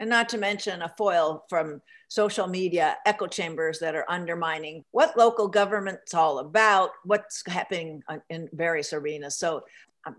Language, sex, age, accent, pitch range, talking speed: English, female, 50-69, American, 175-230 Hz, 155 wpm